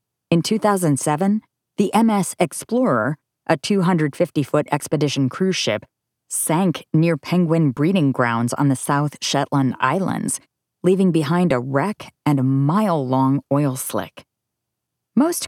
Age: 30-49